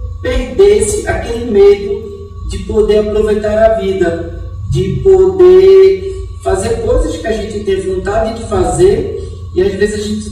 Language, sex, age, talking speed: Portuguese, male, 40-59, 140 wpm